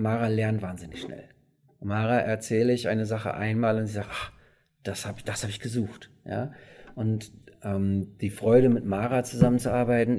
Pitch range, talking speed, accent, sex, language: 105-125 Hz, 165 wpm, German, male, German